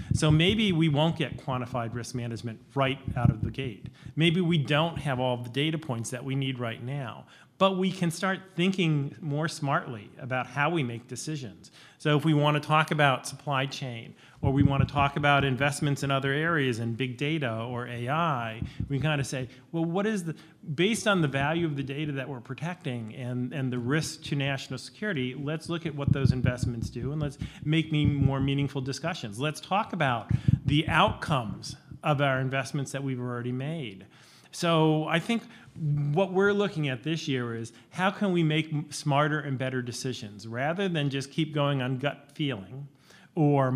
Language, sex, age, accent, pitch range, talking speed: English, male, 40-59, American, 130-155 Hz, 190 wpm